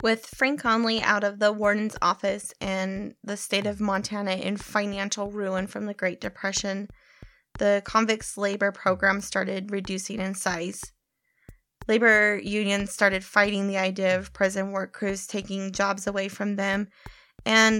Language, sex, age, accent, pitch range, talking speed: English, female, 20-39, American, 190-205 Hz, 150 wpm